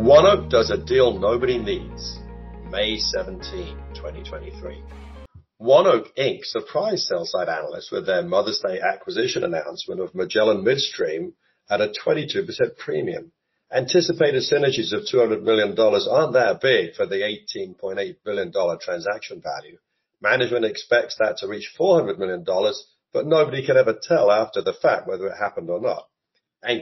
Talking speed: 145 wpm